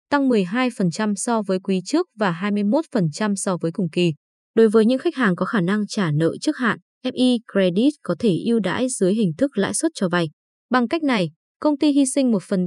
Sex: female